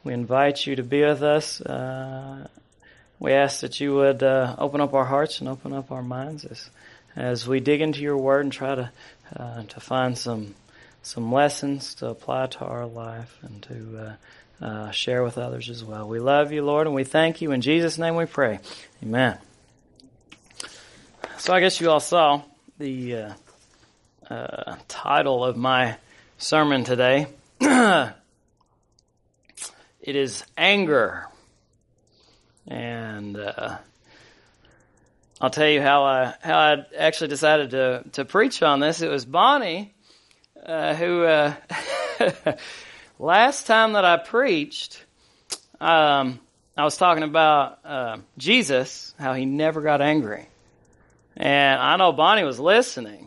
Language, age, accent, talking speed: English, 30-49, American, 145 wpm